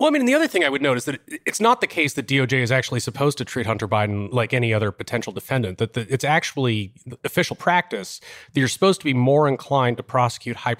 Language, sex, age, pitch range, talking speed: English, male, 30-49, 105-125 Hz, 255 wpm